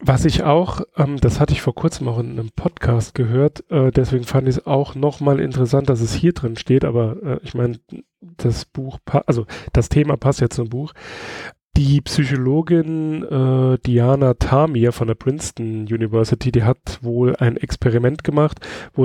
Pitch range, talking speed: 120-150 Hz, 180 wpm